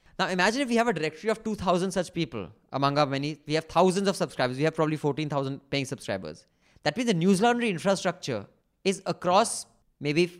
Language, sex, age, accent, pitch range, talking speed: English, male, 20-39, Indian, 130-175 Hz, 195 wpm